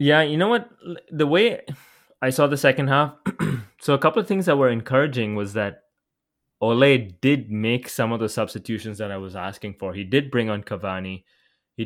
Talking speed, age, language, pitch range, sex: 195 wpm, 20-39, English, 110-140 Hz, male